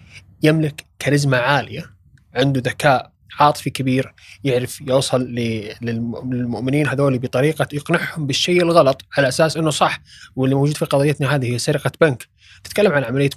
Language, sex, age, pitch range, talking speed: Arabic, male, 20-39, 125-150 Hz, 135 wpm